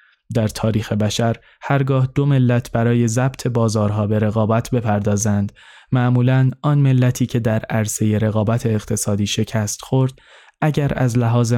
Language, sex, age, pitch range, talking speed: Persian, male, 20-39, 110-125 Hz, 130 wpm